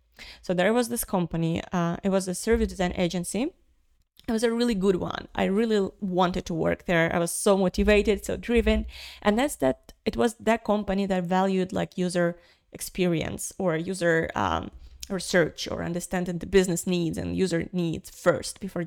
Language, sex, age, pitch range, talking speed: English, female, 30-49, 175-210 Hz, 180 wpm